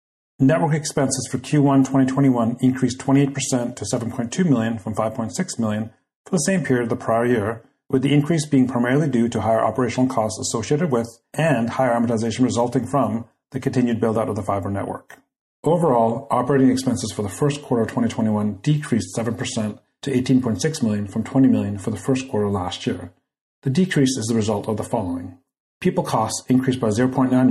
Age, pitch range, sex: 40-59, 110-135 Hz, male